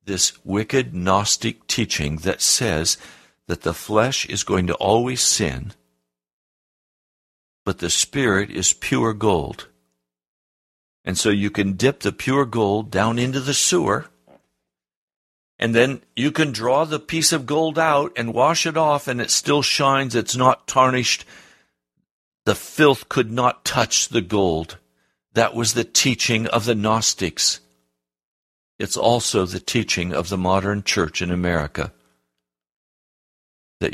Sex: male